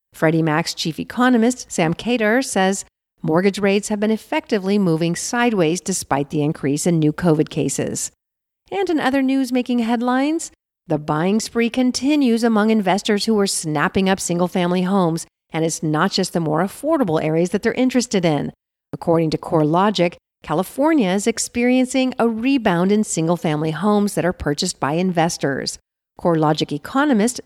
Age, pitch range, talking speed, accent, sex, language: 50-69, 165-230 Hz, 150 wpm, American, female, English